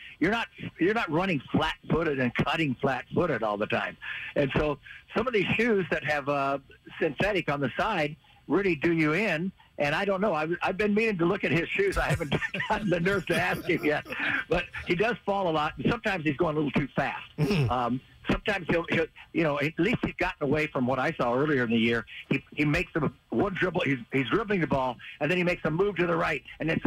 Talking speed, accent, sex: 235 wpm, American, male